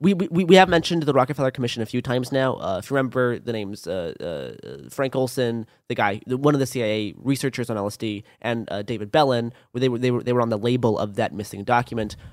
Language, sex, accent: English, male, American